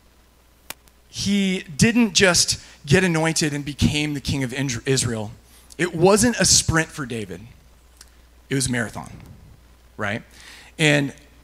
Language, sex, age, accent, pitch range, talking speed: English, male, 20-39, American, 125-175 Hz, 120 wpm